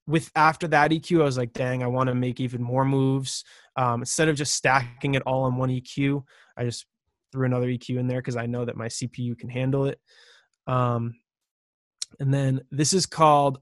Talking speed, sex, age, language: 205 wpm, male, 20-39, English